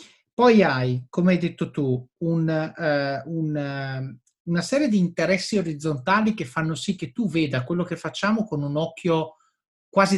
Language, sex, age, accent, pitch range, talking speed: Italian, male, 30-49, native, 140-180 Hz, 140 wpm